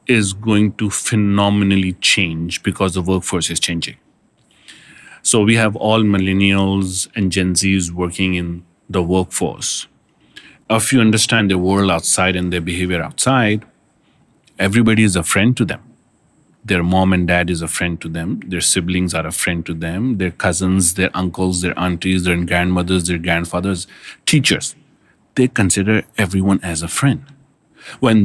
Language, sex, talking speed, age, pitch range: English, male, 155 wpm, 40-59, 90-125 Hz